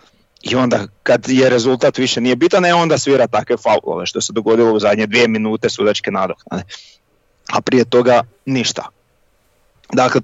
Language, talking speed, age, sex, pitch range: Croatian, 160 wpm, 30-49, male, 110-125 Hz